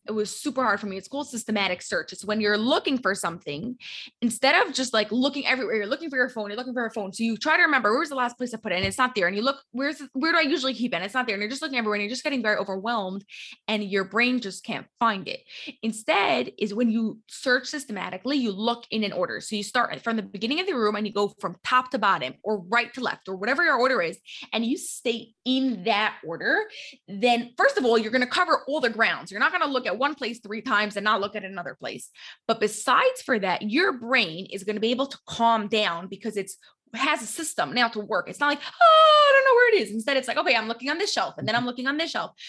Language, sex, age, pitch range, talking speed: English, female, 20-39, 210-265 Hz, 280 wpm